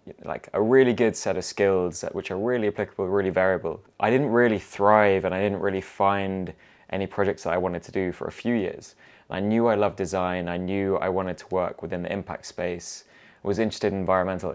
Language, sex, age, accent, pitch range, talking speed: English, male, 20-39, British, 90-105 Hz, 220 wpm